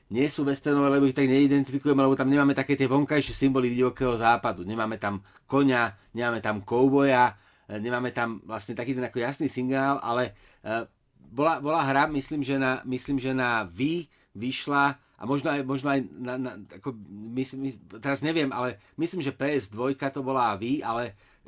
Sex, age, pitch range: male, 30-49, 125-140 Hz